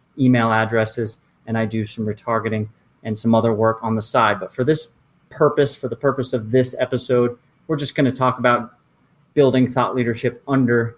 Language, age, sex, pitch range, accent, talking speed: English, 30-49, male, 115-135 Hz, American, 185 wpm